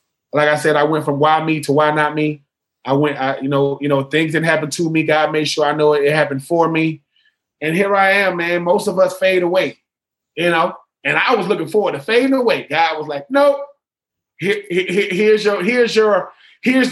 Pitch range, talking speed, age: 155-200 Hz, 225 wpm, 20-39